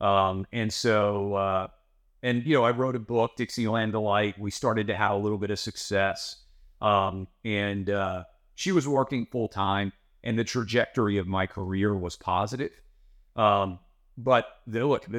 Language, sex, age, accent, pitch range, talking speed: English, male, 30-49, American, 95-110 Hz, 170 wpm